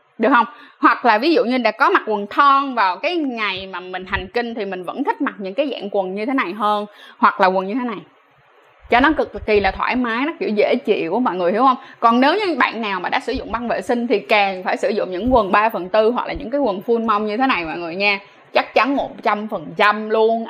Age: 20-39